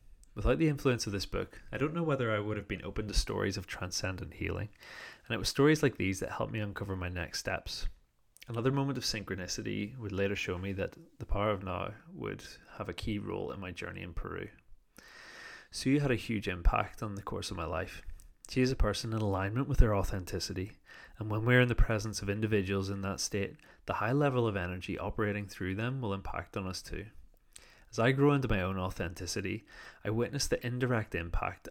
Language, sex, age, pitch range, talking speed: English, male, 30-49, 95-115 Hz, 210 wpm